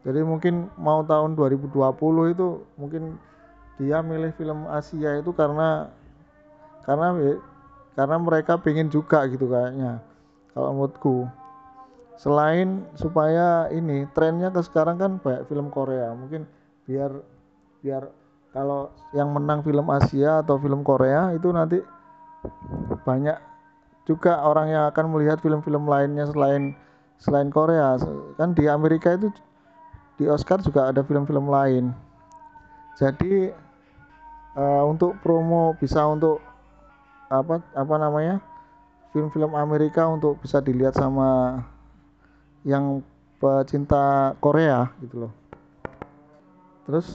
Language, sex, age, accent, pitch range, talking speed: Indonesian, male, 20-39, native, 135-165 Hz, 110 wpm